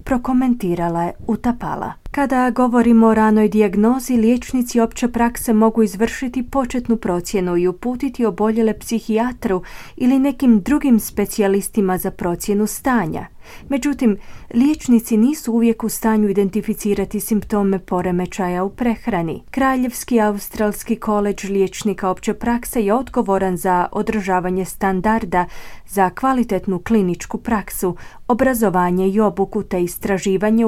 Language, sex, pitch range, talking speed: Croatian, female, 185-230 Hz, 110 wpm